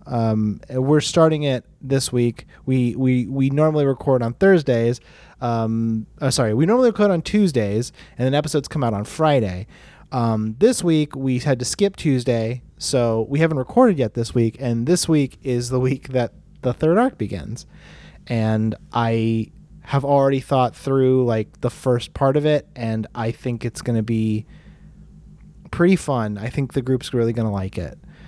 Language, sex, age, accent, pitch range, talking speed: English, male, 30-49, American, 115-155 Hz, 180 wpm